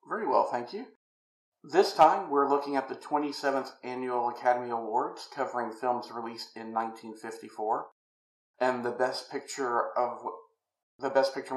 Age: 50-69